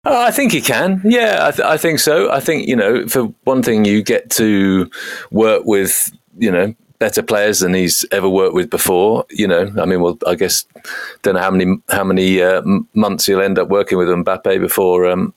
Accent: British